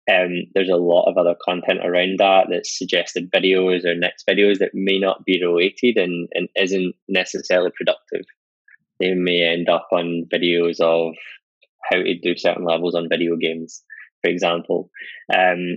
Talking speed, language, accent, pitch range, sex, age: 165 wpm, English, British, 85-90 Hz, male, 10-29